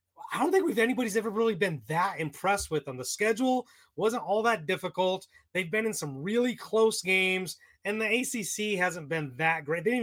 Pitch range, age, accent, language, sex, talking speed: 150-205 Hz, 30-49, American, English, male, 195 wpm